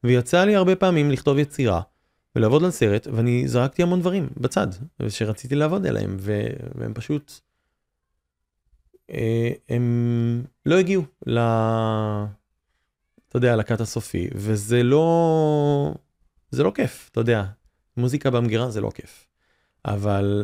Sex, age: male, 30-49